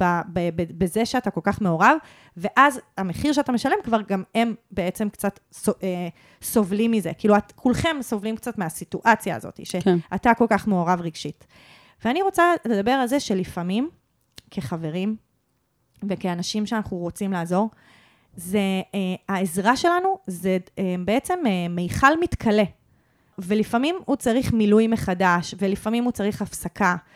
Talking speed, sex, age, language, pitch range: 120 wpm, female, 30-49, Hebrew, 185-245 Hz